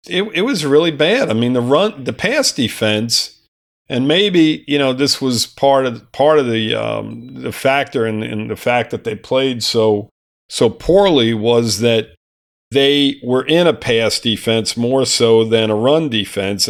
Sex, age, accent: male, 50-69, American